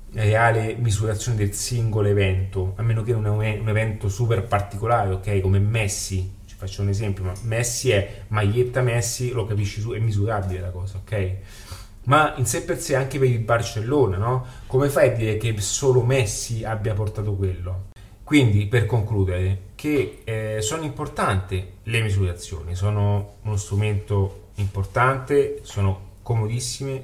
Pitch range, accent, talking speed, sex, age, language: 100-120 Hz, native, 155 wpm, male, 30-49, Italian